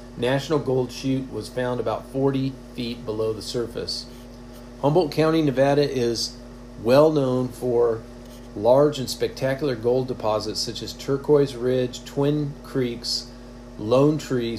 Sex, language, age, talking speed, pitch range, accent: male, English, 40-59, 130 wpm, 120-140 Hz, American